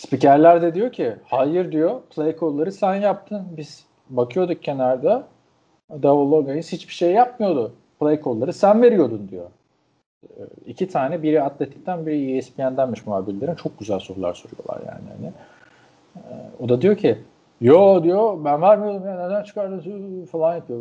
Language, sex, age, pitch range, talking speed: Turkish, male, 40-59, 125-185 Hz, 140 wpm